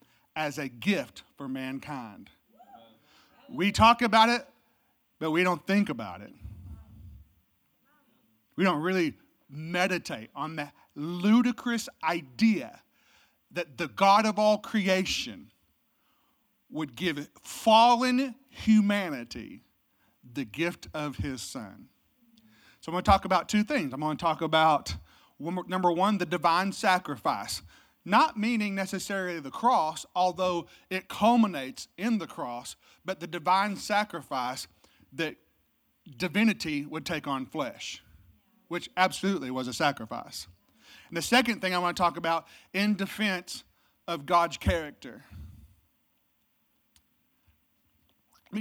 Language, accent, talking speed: English, American, 120 wpm